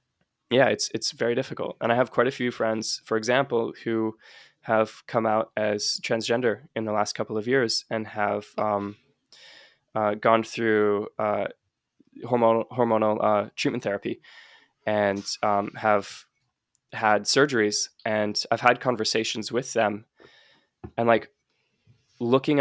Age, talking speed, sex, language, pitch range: 10-29, 140 wpm, male, English, 110-125 Hz